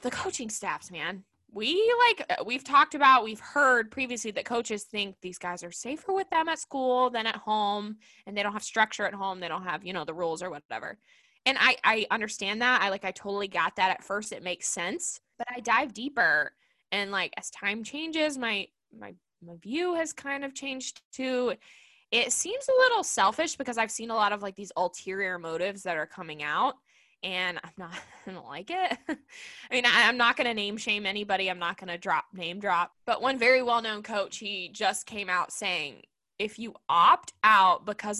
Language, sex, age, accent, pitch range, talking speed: English, female, 10-29, American, 185-250 Hz, 210 wpm